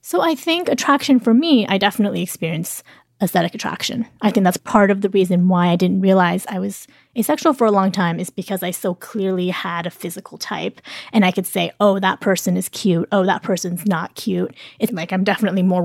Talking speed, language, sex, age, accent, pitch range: 215 wpm, English, female, 20-39, American, 180-210 Hz